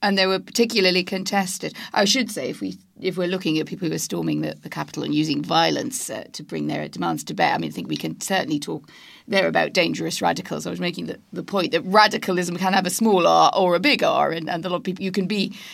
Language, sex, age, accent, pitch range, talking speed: English, female, 40-59, British, 170-225 Hz, 260 wpm